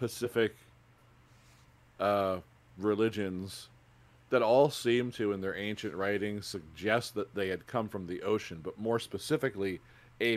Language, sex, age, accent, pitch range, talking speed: English, male, 40-59, American, 100-125 Hz, 135 wpm